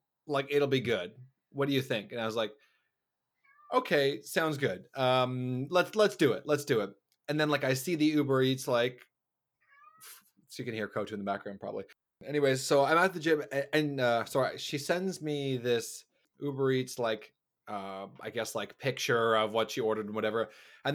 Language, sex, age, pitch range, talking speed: English, male, 30-49, 120-150 Hz, 200 wpm